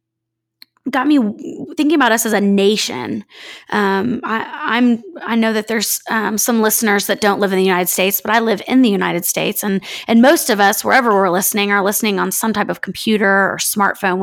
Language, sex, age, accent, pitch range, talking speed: English, female, 20-39, American, 195-230 Hz, 205 wpm